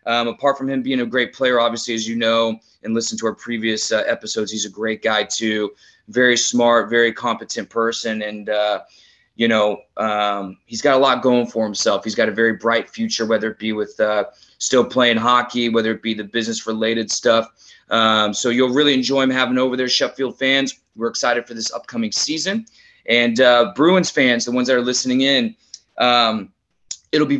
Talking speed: 200 wpm